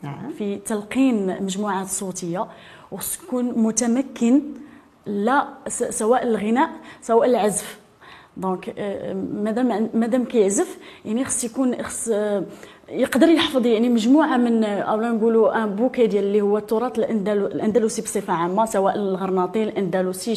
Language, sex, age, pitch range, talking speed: French, female, 20-39, 205-255 Hz, 115 wpm